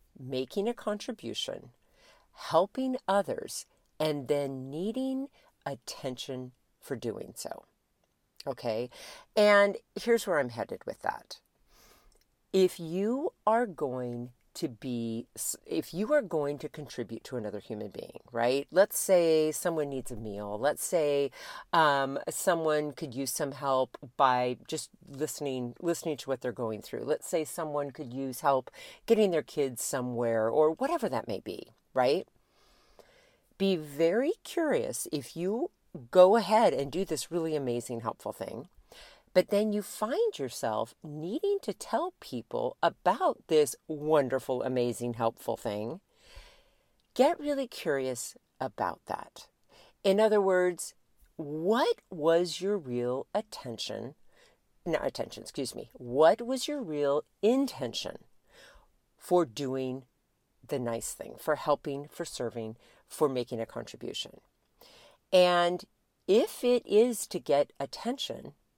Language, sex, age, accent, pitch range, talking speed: English, female, 50-69, American, 130-210 Hz, 130 wpm